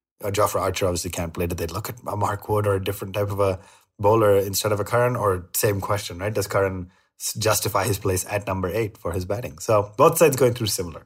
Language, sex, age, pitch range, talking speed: English, male, 30-49, 90-110 Hz, 245 wpm